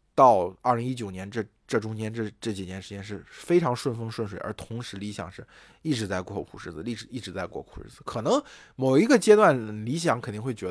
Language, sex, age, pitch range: Chinese, male, 20-39, 105-140 Hz